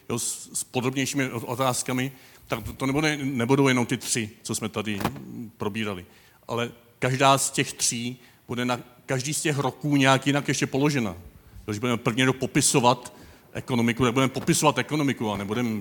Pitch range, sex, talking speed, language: 105-130 Hz, male, 160 wpm, Czech